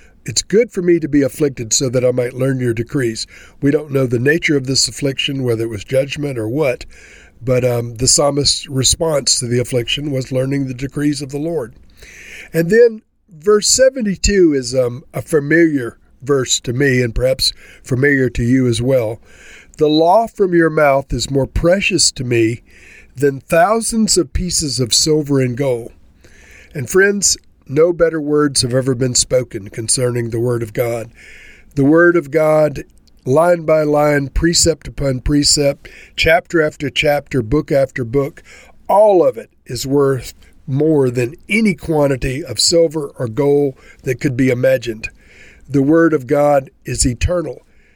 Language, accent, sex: English, American, male